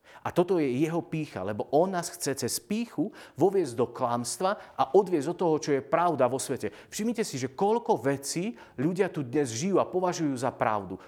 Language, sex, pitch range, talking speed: Slovak, male, 140-190 Hz, 195 wpm